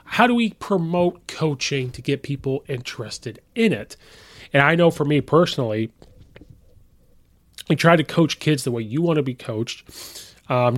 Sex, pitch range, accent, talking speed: male, 120-160 Hz, American, 165 wpm